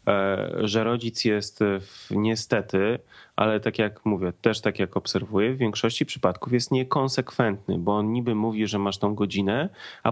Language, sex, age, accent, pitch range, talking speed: Polish, male, 30-49, native, 110-135 Hz, 160 wpm